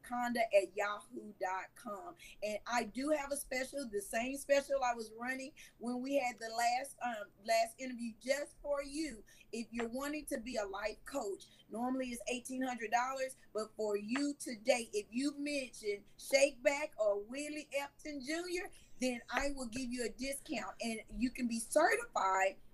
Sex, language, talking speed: female, English, 160 wpm